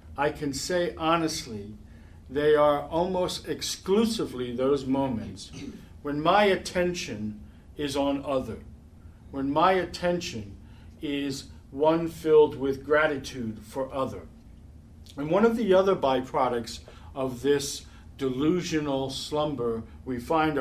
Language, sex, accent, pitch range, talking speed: English, male, American, 115-155 Hz, 110 wpm